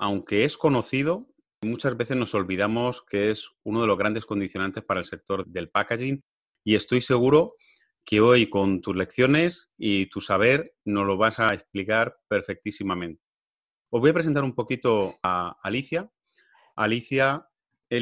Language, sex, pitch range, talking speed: Spanish, male, 100-125 Hz, 155 wpm